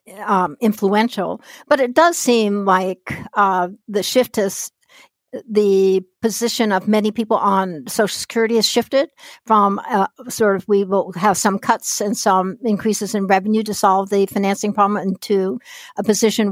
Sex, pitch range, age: female, 195-225 Hz, 60-79